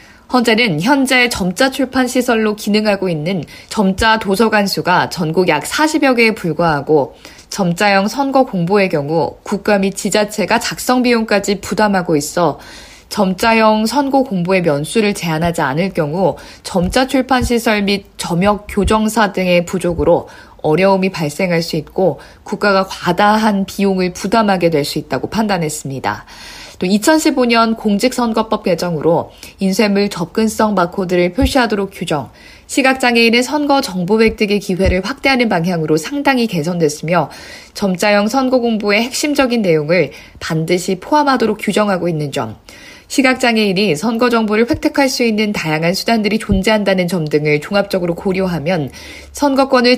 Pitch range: 175-230 Hz